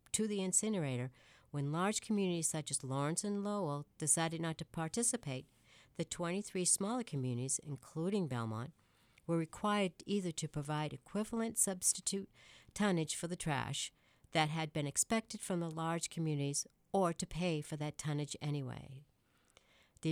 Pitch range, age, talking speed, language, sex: 150-190 Hz, 60-79, 145 wpm, English, female